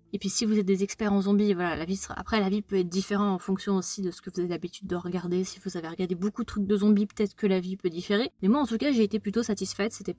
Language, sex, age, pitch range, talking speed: French, female, 20-39, 190-225 Hz, 325 wpm